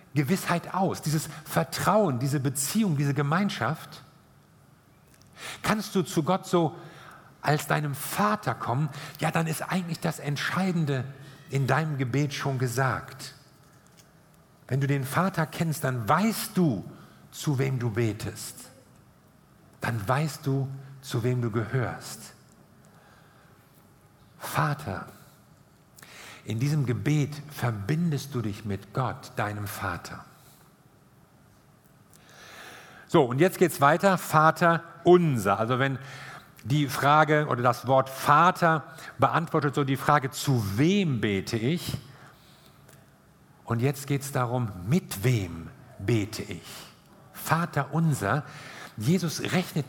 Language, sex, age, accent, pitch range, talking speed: German, male, 50-69, German, 125-160 Hz, 115 wpm